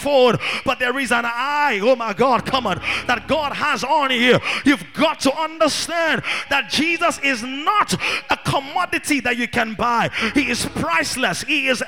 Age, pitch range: 30-49, 240-310 Hz